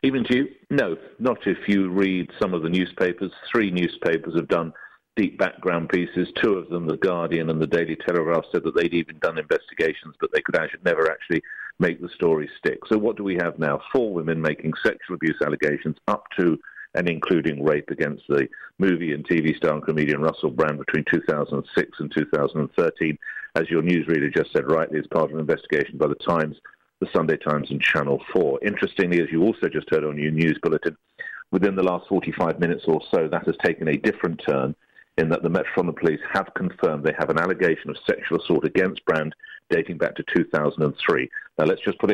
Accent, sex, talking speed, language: British, male, 205 wpm, English